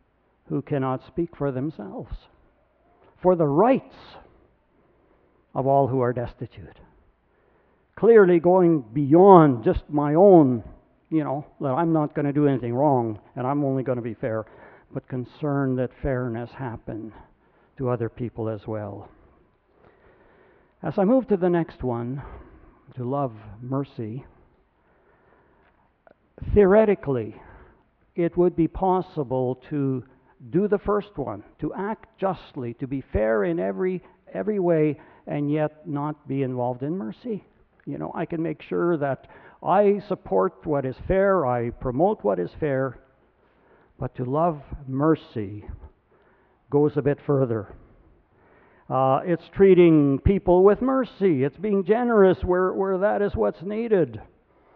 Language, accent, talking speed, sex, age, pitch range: English, American, 135 wpm, male, 60-79, 125-175 Hz